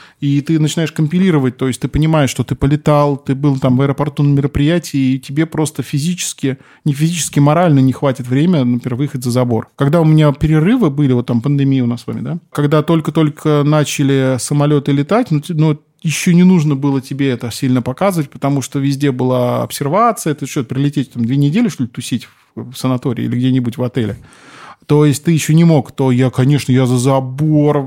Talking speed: 195 wpm